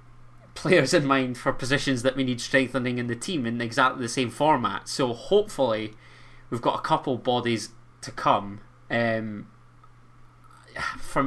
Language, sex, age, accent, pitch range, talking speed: English, male, 20-39, British, 115-135 Hz, 150 wpm